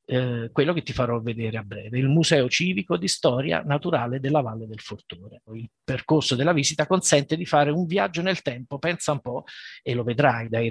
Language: Italian